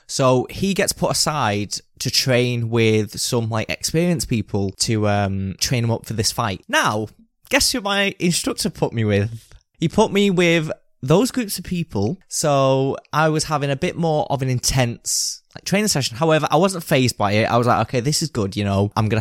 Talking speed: 205 wpm